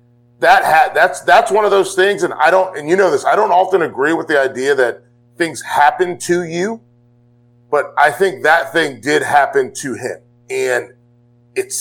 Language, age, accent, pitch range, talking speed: English, 30-49, American, 120-175 Hz, 195 wpm